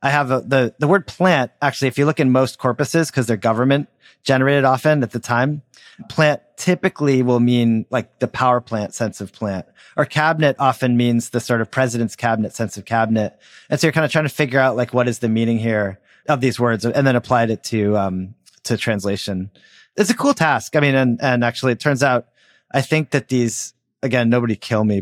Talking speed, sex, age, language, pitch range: 220 wpm, male, 30-49, English, 115-140 Hz